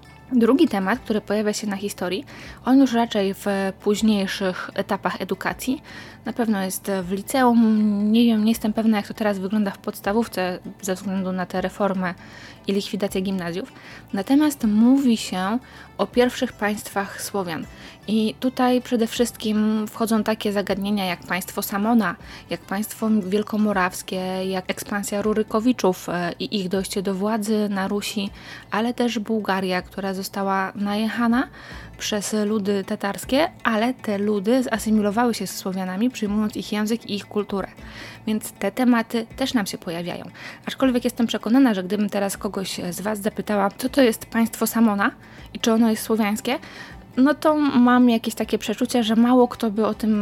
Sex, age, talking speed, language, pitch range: female, 20-39, 155 wpm, Polish, 200-235 Hz